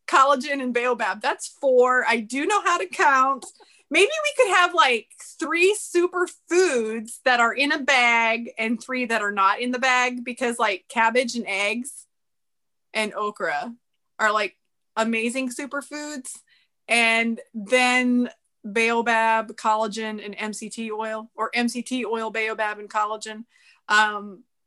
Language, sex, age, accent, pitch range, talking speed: English, female, 20-39, American, 215-265 Hz, 135 wpm